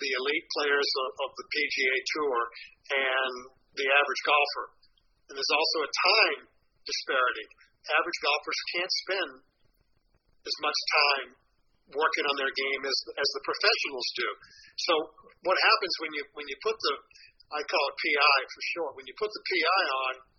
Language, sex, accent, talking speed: English, male, American, 155 wpm